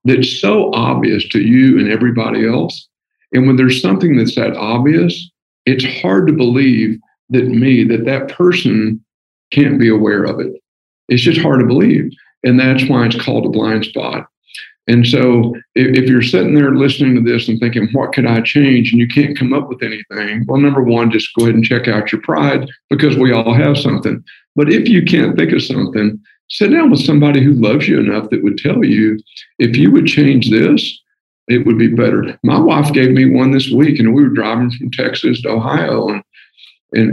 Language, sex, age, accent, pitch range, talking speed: English, male, 50-69, American, 115-135 Hz, 205 wpm